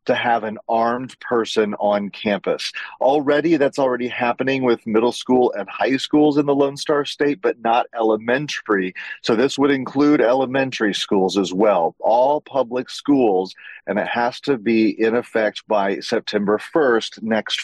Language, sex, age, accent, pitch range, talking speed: English, male, 40-59, American, 110-135 Hz, 160 wpm